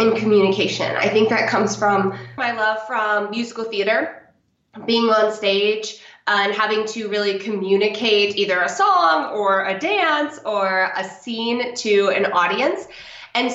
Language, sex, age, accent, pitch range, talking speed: English, female, 20-39, American, 180-220 Hz, 145 wpm